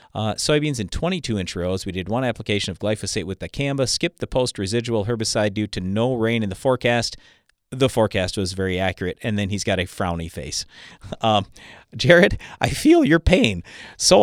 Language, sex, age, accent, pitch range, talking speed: English, male, 40-59, American, 100-130 Hz, 195 wpm